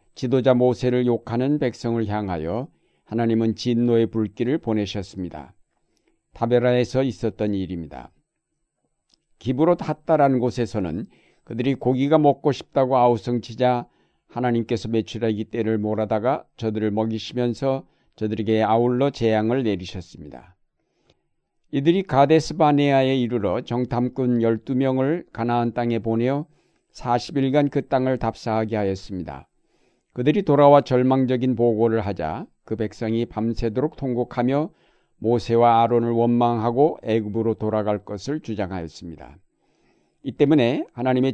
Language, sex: Korean, male